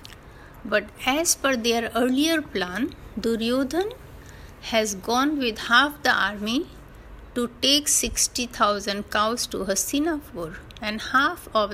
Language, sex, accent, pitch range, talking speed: Hindi, female, native, 195-260 Hz, 120 wpm